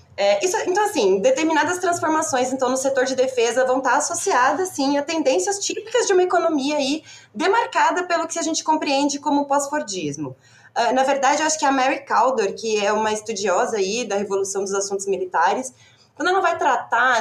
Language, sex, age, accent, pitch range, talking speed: Portuguese, female, 20-39, Brazilian, 180-275 Hz, 185 wpm